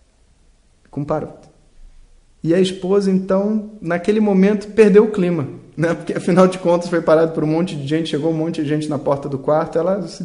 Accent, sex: Brazilian, male